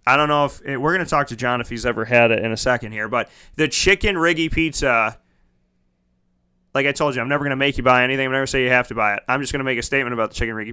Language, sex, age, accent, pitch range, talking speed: English, male, 20-39, American, 135-165 Hz, 310 wpm